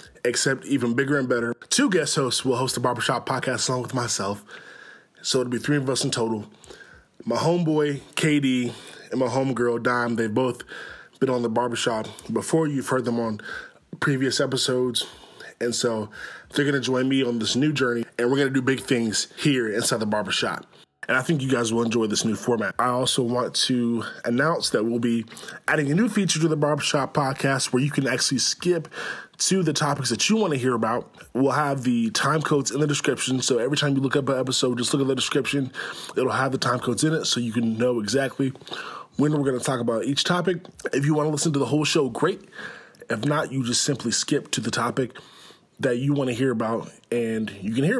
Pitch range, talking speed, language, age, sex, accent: 120-150 Hz, 220 wpm, English, 20-39, male, American